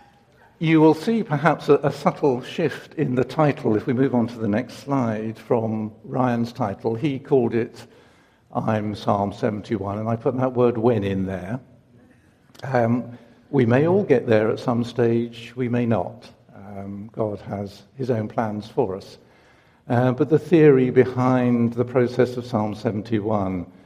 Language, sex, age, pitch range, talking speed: English, male, 60-79, 110-125 Hz, 165 wpm